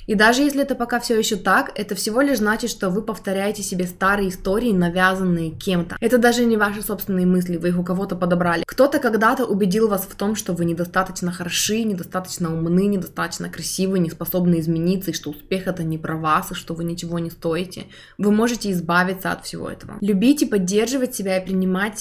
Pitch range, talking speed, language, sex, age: 180-215 Hz, 195 wpm, Russian, female, 20-39